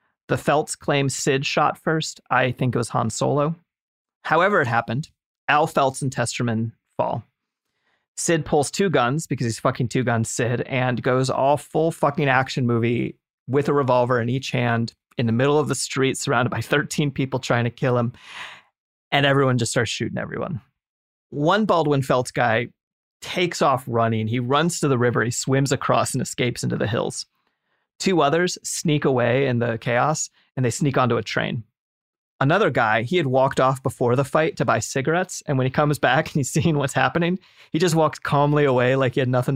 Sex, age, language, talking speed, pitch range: male, 30-49, English, 195 wpm, 125-150 Hz